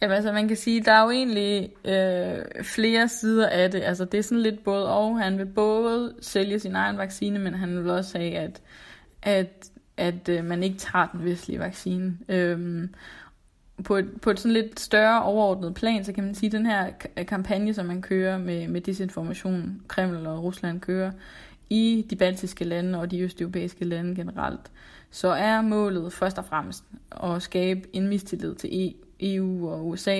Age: 20-39